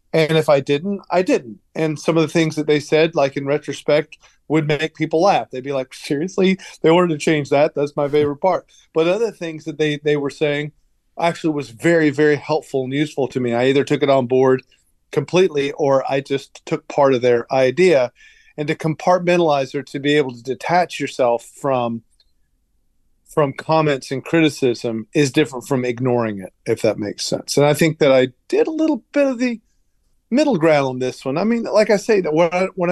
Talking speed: 205 wpm